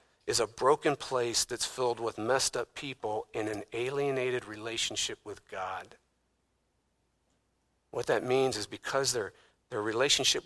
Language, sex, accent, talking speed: English, male, American, 140 wpm